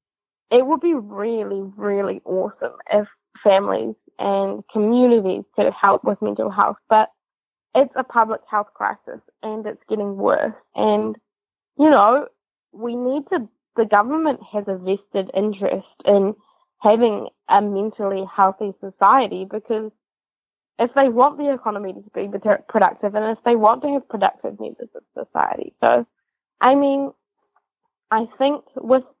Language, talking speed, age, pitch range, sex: English, 140 wpm, 20-39, 200-260 Hz, female